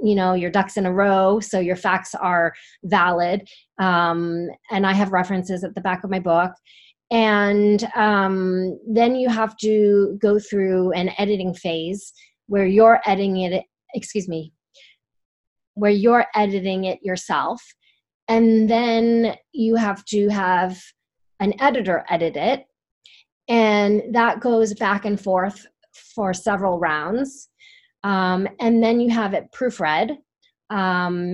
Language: English